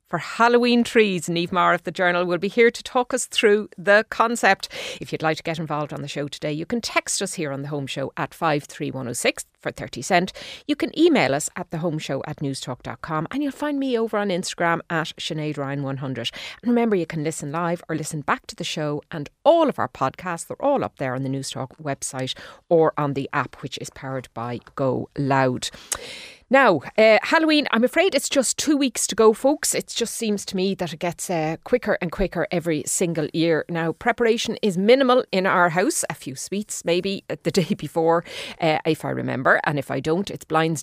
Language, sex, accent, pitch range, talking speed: English, female, Irish, 145-210 Hz, 215 wpm